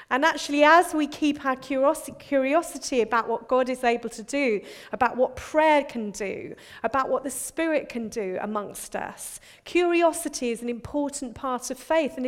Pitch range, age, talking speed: 225-290 Hz, 40-59, 170 wpm